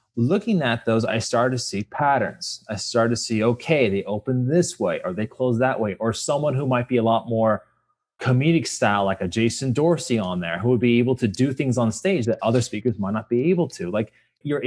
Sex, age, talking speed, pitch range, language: male, 20-39, 235 wpm, 110-145 Hz, English